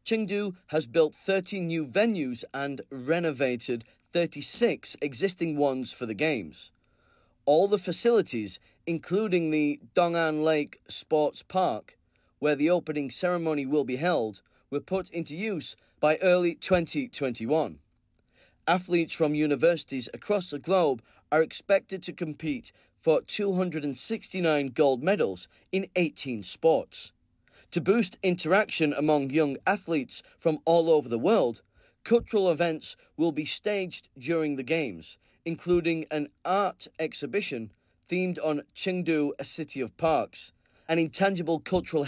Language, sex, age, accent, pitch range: Chinese, male, 30-49, British, 135-180 Hz